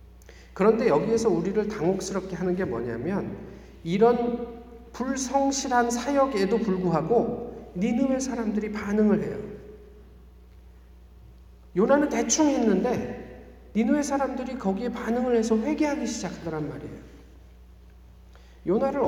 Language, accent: Korean, native